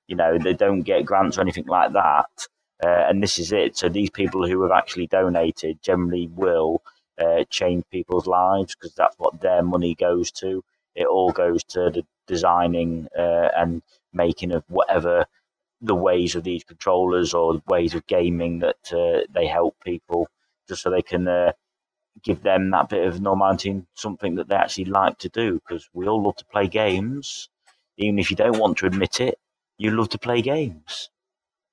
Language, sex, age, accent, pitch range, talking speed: English, male, 30-49, British, 85-115 Hz, 185 wpm